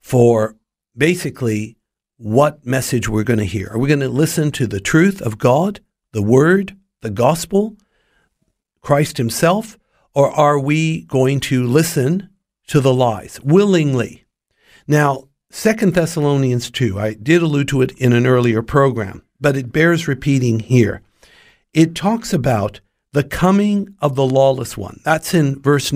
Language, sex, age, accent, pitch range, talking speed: English, male, 50-69, American, 120-160 Hz, 150 wpm